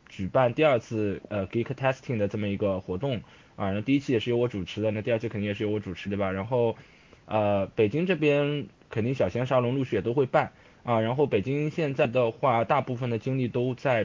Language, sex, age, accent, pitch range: Chinese, male, 20-39, native, 110-140 Hz